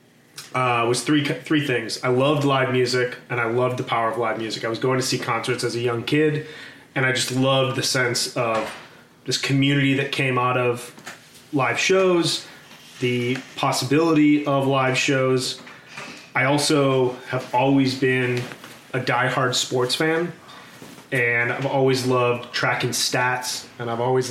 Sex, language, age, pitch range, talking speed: male, English, 30-49, 125-135 Hz, 160 wpm